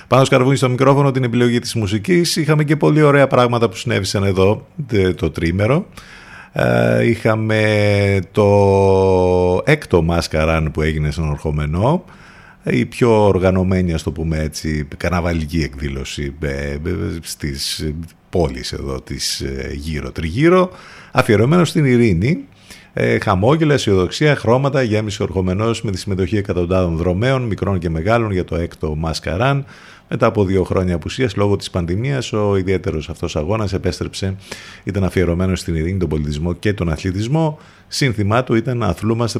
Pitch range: 85-115 Hz